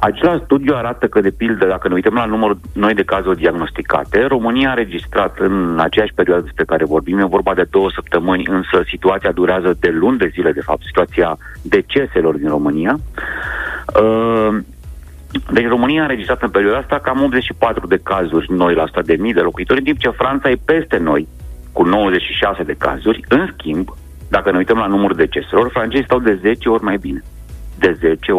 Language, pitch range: Romanian, 80-115 Hz